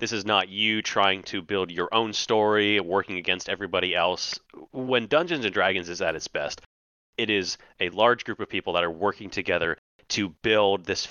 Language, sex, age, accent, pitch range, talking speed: English, male, 30-49, American, 95-115 Hz, 190 wpm